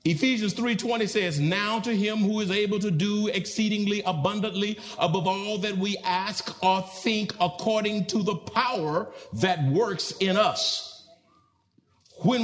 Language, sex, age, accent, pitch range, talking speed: English, male, 50-69, American, 170-220 Hz, 140 wpm